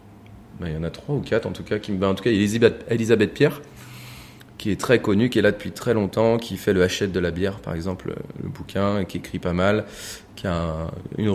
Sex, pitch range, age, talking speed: male, 95-110 Hz, 30-49, 265 wpm